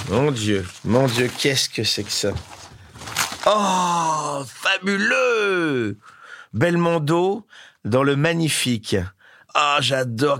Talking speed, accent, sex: 105 wpm, French, male